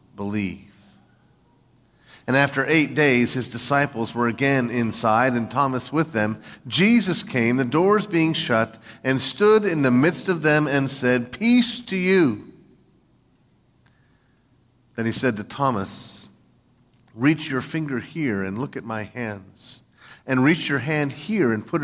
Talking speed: 145 wpm